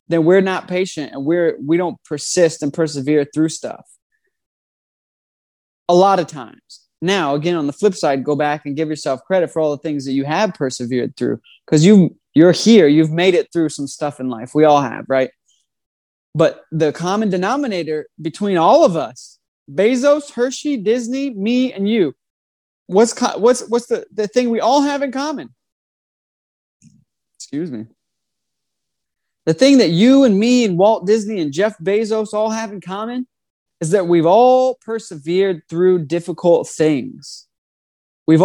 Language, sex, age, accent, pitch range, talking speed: English, male, 20-39, American, 150-220 Hz, 165 wpm